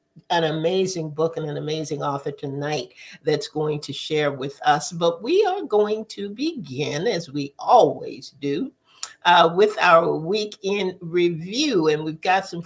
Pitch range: 150-210 Hz